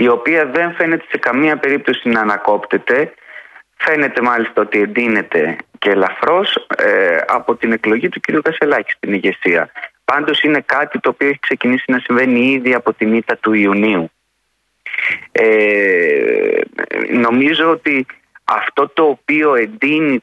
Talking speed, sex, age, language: 135 wpm, male, 30-49, Greek